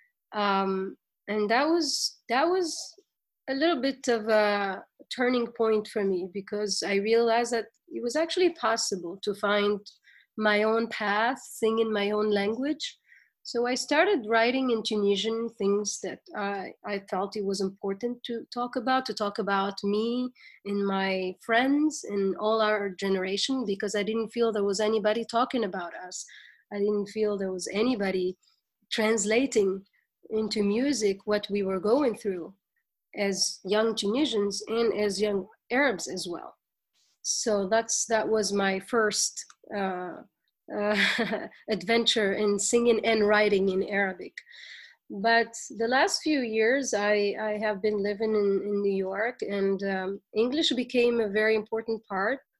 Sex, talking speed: female, 150 wpm